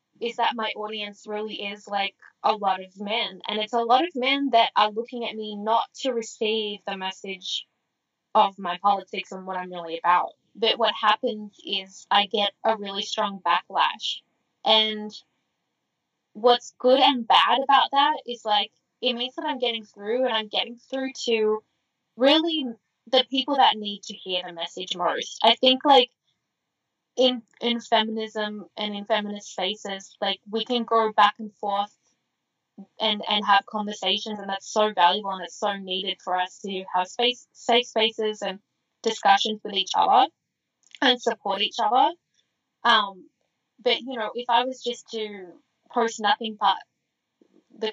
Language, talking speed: English, 165 wpm